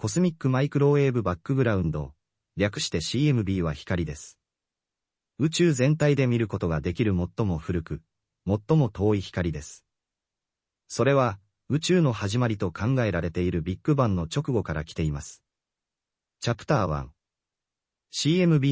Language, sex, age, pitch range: Japanese, male, 30-49, 85-130 Hz